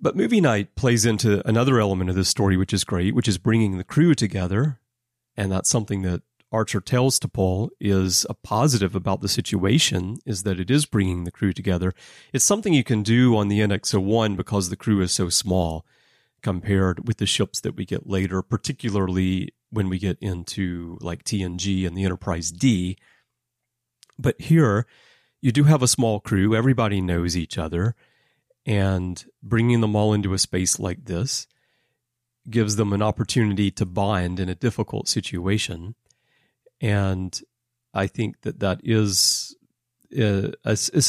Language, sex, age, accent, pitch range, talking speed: English, male, 30-49, American, 95-120 Hz, 160 wpm